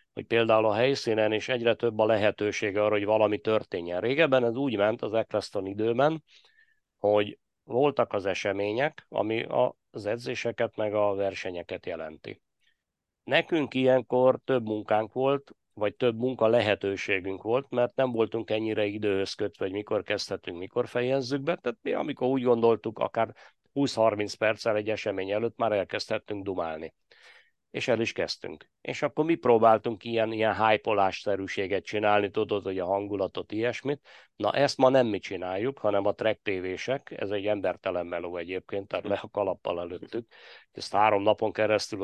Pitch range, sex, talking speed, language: 105-120 Hz, male, 155 wpm, Hungarian